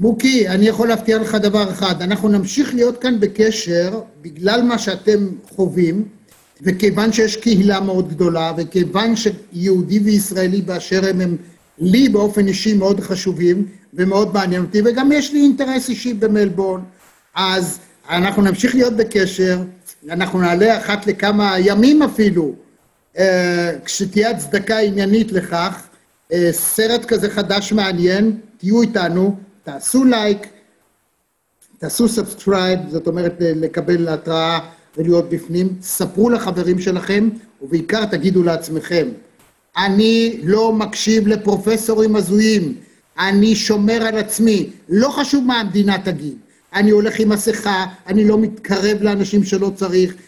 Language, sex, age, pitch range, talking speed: Hebrew, male, 50-69, 185-225 Hz, 125 wpm